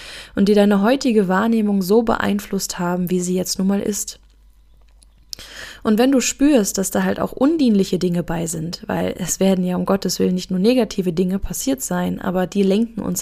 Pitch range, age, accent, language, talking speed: 180-220 Hz, 20-39, German, German, 195 wpm